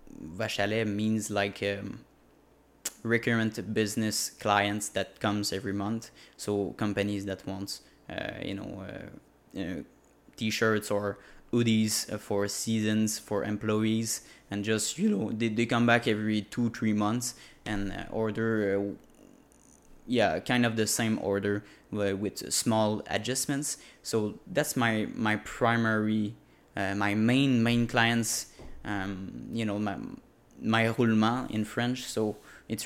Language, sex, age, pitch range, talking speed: French, male, 20-39, 105-115 Hz, 130 wpm